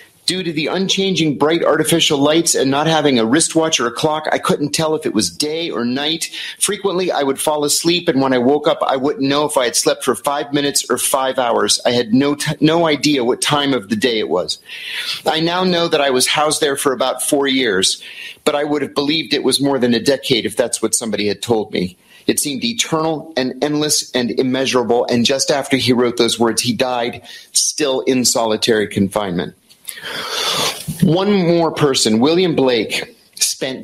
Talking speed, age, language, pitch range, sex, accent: 205 wpm, 40-59, English, 125-165 Hz, male, American